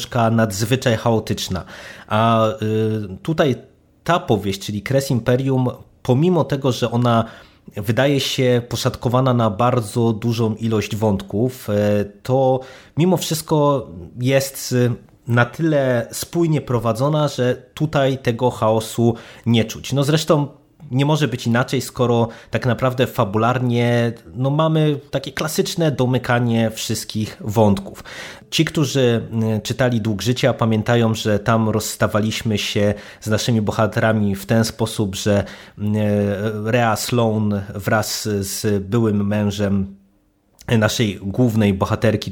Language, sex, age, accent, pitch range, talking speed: Polish, male, 20-39, native, 105-125 Hz, 110 wpm